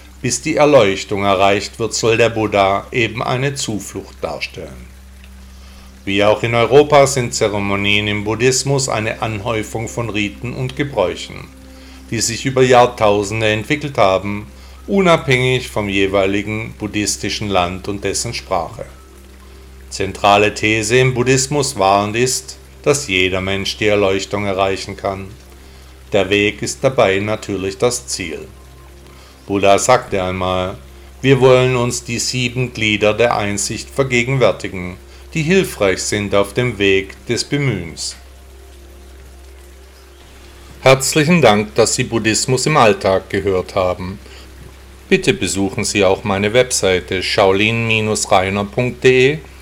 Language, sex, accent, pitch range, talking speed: German, male, German, 80-120 Hz, 120 wpm